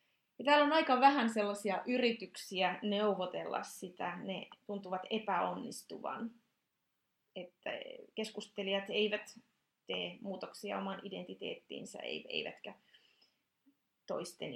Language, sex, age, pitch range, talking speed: Finnish, female, 30-49, 195-235 Hz, 85 wpm